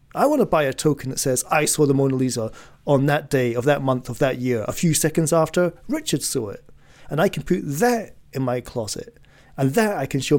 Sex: male